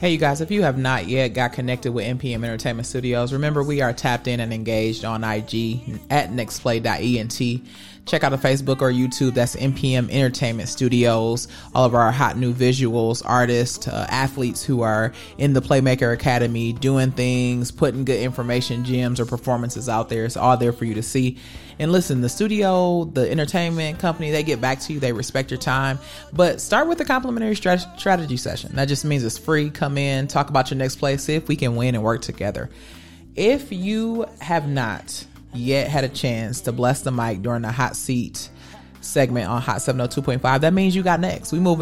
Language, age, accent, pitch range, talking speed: English, 30-49, American, 120-160 Hz, 195 wpm